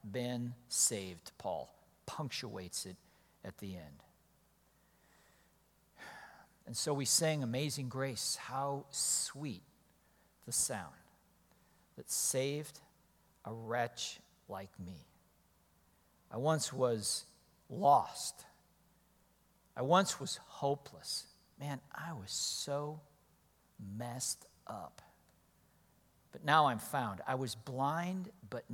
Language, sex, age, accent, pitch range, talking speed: English, male, 60-79, American, 100-155 Hz, 95 wpm